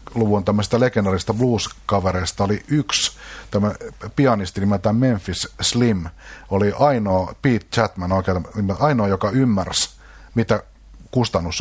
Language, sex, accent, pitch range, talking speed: Finnish, male, native, 95-120 Hz, 100 wpm